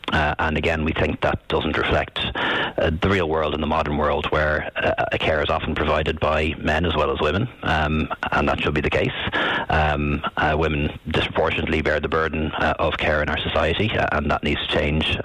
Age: 40-59